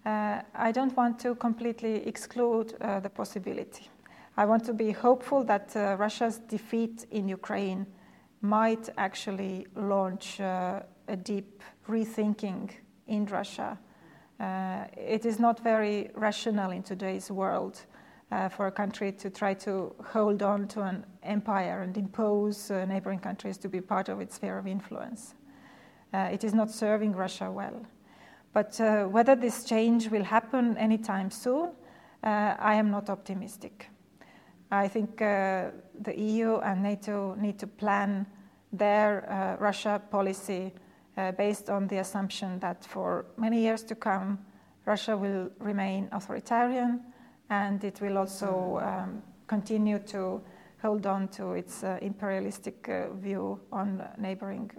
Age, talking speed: 30-49, 145 wpm